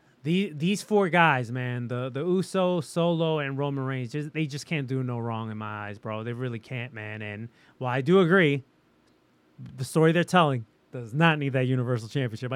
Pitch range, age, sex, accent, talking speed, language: 135-190 Hz, 30-49, male, American, 190 wpm, English